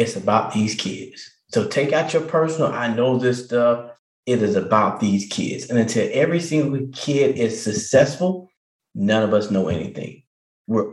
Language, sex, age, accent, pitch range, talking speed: English, male, 20-39, American, 110-135 Hz, 170 wpm